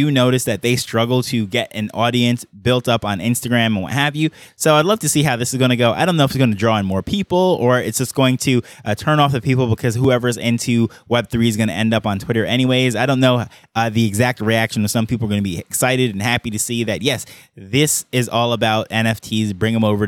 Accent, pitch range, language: American, 110-135 Hz, English